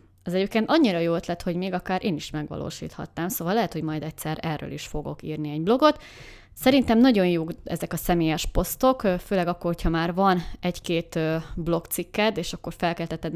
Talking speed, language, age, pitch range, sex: 175 wpm, Hungarian, 20-39, 160-190 Hz, female